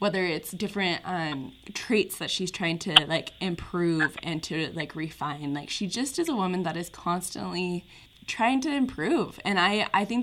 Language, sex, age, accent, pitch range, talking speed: English, female, 20-39, American, 160-195 Hz, 180 wpm